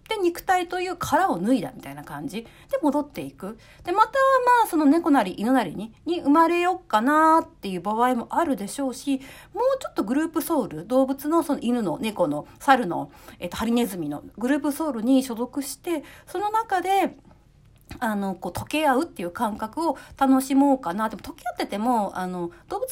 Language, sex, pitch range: Japanese, female, 220-345 Hz